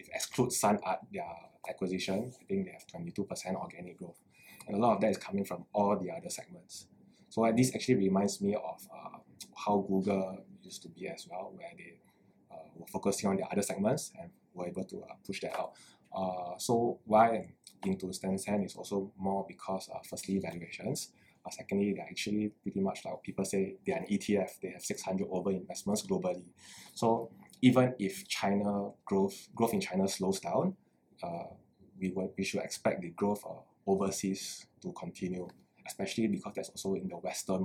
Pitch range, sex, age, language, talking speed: 95-110 Hz, male, 20-39, English, 190 wpm